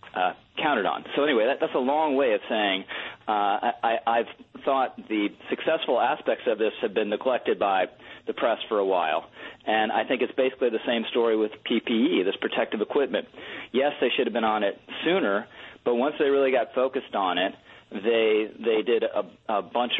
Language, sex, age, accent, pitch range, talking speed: English, male, 40-59, American, 110-135 Hz, 200 wpm